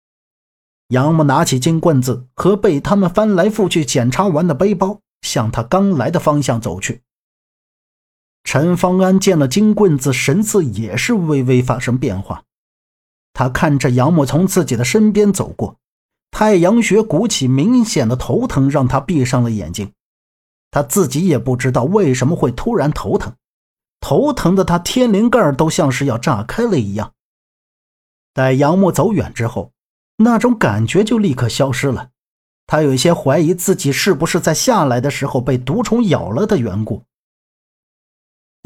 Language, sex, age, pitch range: Chinese, male, 50-69, 125-190 Hz